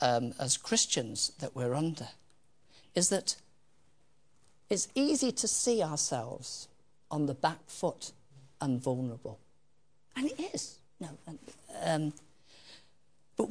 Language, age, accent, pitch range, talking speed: English, 50-69, British, 130-185 Hz, 105 wpm